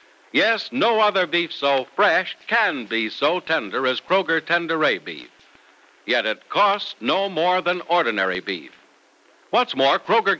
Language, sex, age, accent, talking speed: English, male, 60-79, American, 145 wpm